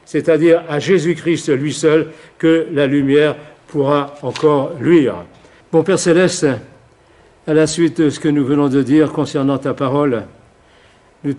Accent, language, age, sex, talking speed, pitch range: French, French, 60-79, male, 155 wpm, 125-155 Hz